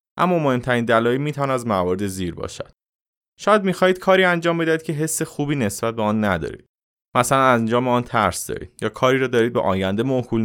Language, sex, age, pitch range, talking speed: Persian, male, 20-39, 95-135 Hz, 190 wpm